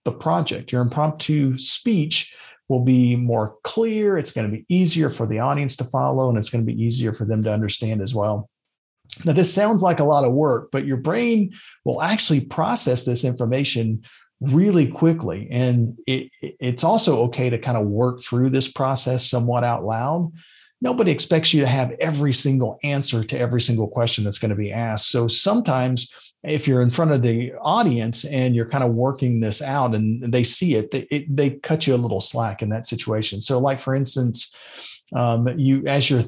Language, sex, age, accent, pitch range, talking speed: English, male, 40-59, American, 115-145 Hz, 195 wpm